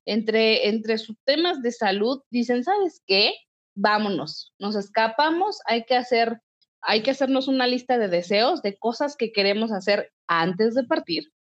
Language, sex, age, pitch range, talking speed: Spanish, female, 30-49, 200-260 Hz, 155 wpm